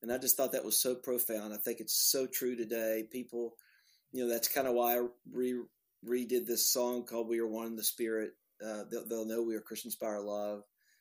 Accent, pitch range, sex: American, 110-135 Hz, male